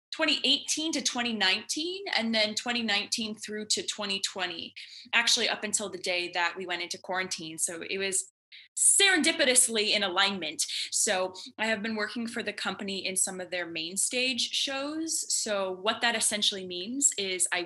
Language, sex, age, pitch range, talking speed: English, female, 20-39, 185-235 Hz, 160 wpm